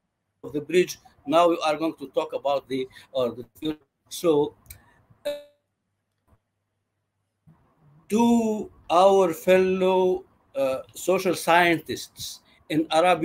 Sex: male